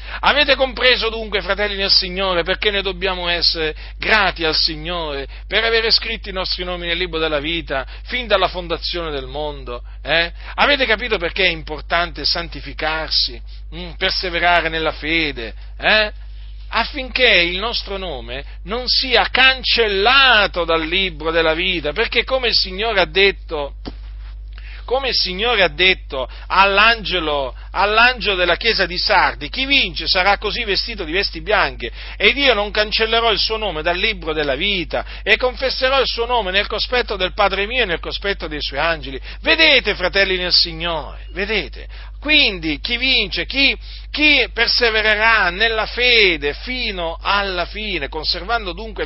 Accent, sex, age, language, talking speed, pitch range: native, male, 40-59, Italian, 150 wpm, 155-220 Hz